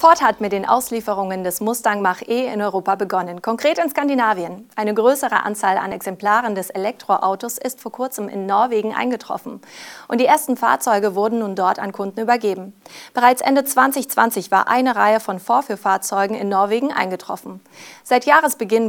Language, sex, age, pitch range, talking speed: German, female, 30-49, 195-250 Hz, 160 wpm